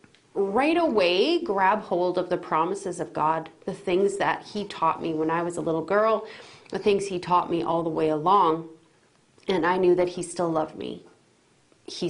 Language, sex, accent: English, female, American